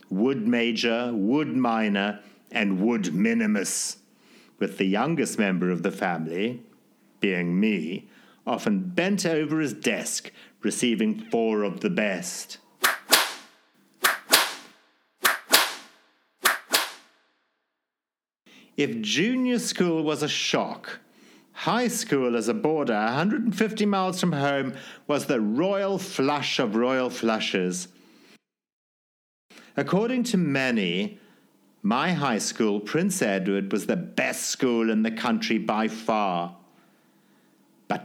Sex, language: male, English